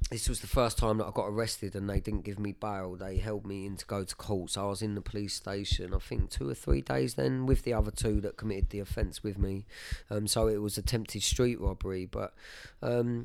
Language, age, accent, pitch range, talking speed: English, 20-39, British, 100-115 Hz, 255 wpm